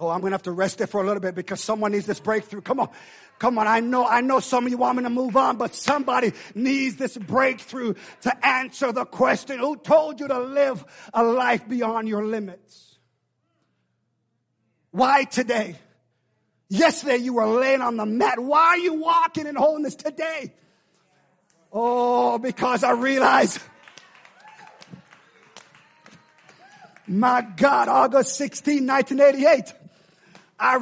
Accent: American